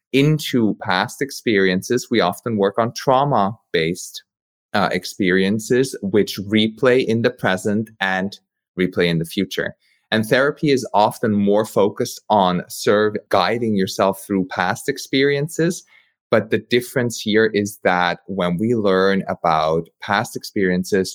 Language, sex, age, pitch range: English, male, 30-49, 85-110 Hz